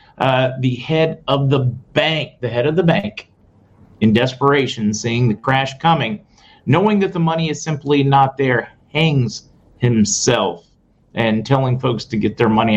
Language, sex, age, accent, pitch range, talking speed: English, male, 40-59, American, 115-155 Hz, 160 wpm